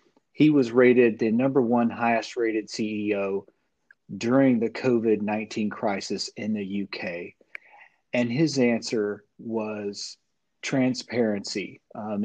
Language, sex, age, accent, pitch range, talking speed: English, male, 40-59, American, 110-130 Hz, 110 wpm